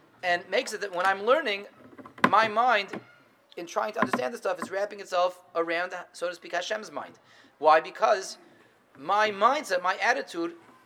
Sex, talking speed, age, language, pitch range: male, 165 wpm, 30-49, English, 145-200 Hz